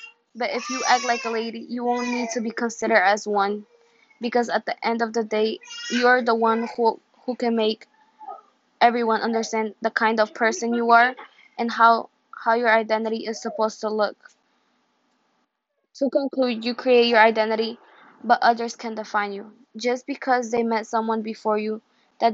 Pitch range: 220-245 Hz